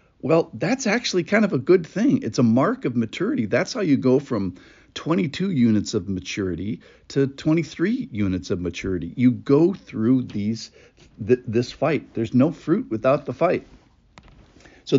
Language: English